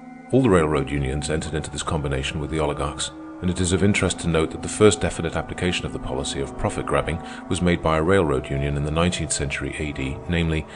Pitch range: 75-90 Hz